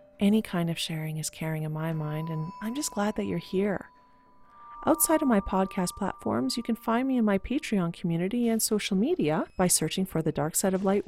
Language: English